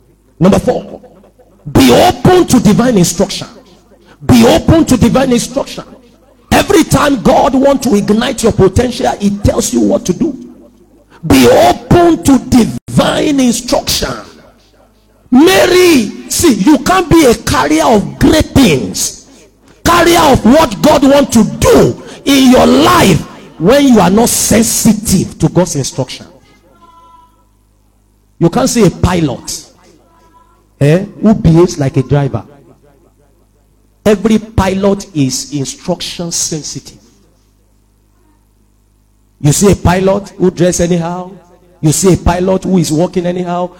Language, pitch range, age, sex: English, 155-255 Hz, 50-69, male